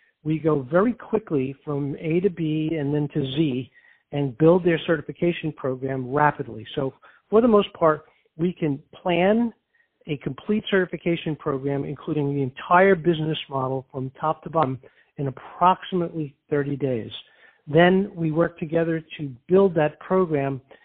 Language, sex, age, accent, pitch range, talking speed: English, male, 50-69, American, 140-175 Hz, 145 wpm